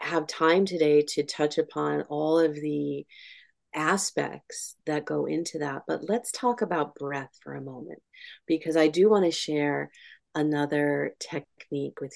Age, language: 30-49, English